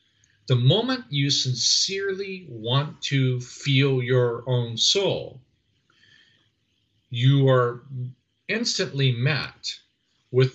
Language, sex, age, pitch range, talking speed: English, male, 50-69, 115-145 Hz, 85 wpm